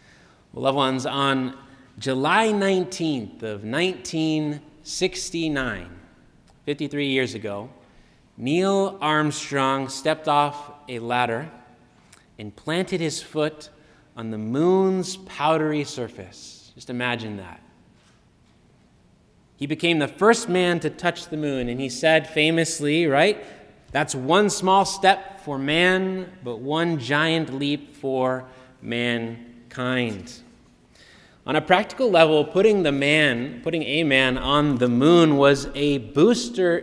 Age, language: 30-49, English